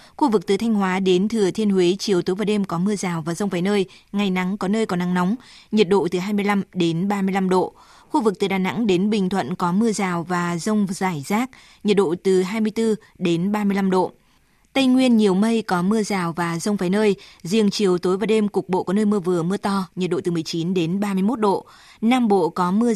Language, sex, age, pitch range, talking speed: Vietnamese, female, 20-39, 180-210 Hz, 240 wpm